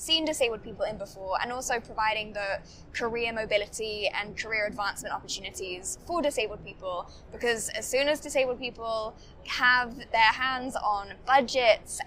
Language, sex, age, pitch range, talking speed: English, female, 10-29, 215-260 Hz, 145 wpm